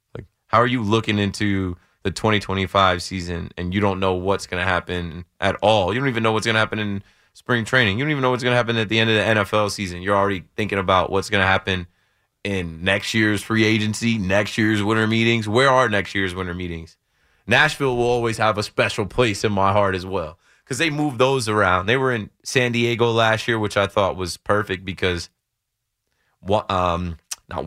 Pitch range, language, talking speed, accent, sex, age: 95-125 Hz, English, 215 wpm, American, male, 20-39